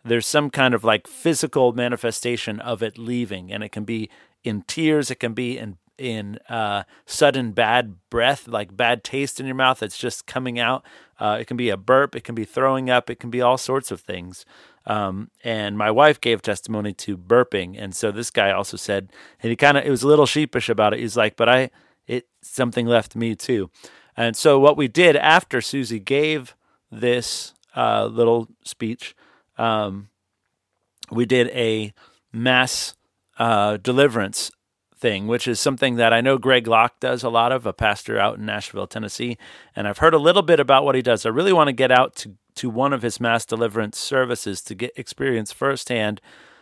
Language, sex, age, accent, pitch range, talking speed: English, male, 30-49, American, 110-130 Hz, 195 wpm